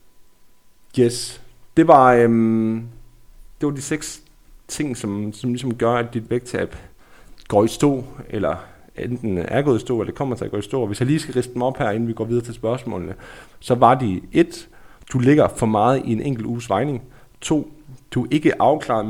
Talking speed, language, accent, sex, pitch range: 205 wpm, Danish, native, male, 115-135 Hz